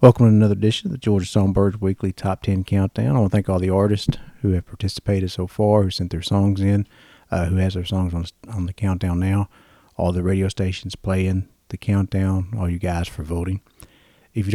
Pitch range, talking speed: 95-110 Hz, 220 wpm